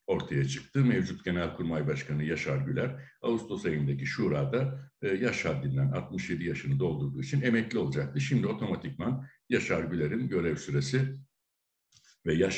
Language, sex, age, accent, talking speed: Turkish, male, 60-79, native, 130 wpm